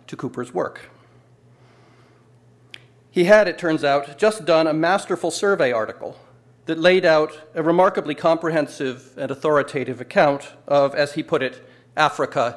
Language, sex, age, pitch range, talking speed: English, male, 40-59, 130-175 Hz, 140 wpm